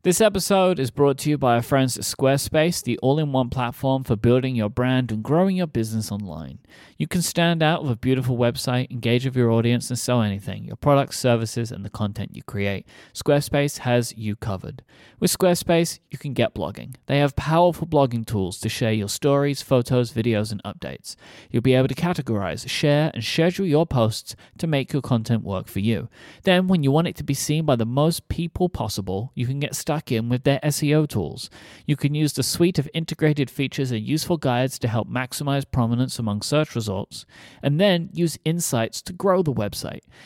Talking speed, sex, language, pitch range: 200 wpm, male, English, 115-150 Hz